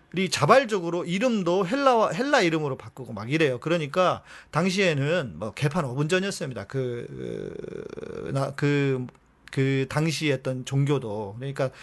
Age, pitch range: 40-59, 135-185 Hz